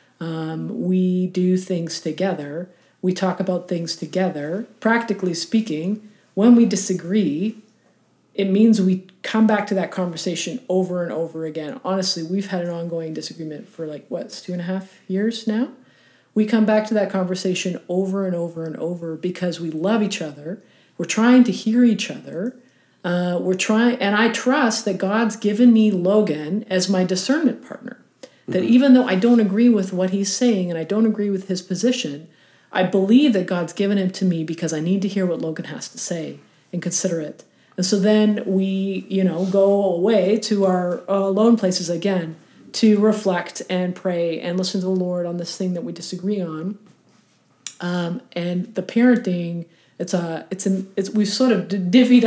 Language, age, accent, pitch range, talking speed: English, 40-59, American, 175-215 Hz, 180 wpm